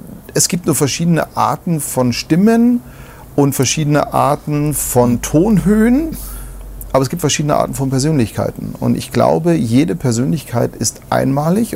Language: German